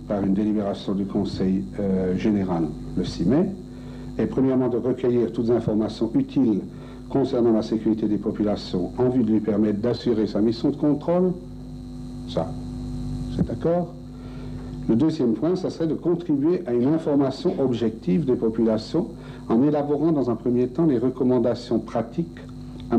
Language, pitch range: German, 105-130 Hz